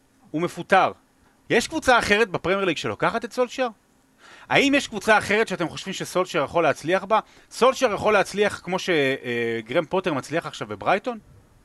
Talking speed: 150 wpm